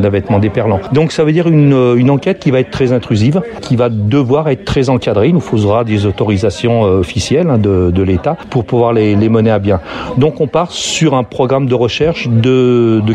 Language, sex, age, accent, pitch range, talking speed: French, male, 40-59, French, 115-150 Hz, 205 wpm